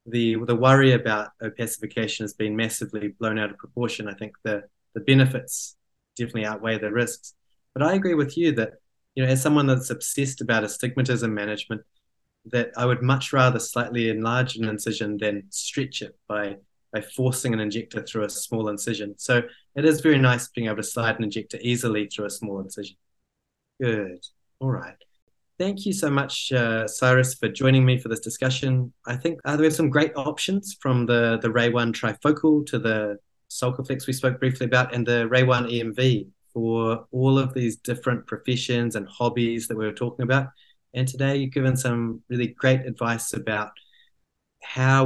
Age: 20-39